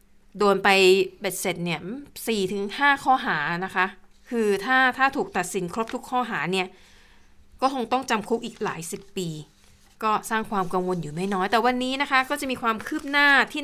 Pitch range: 190-245 Hz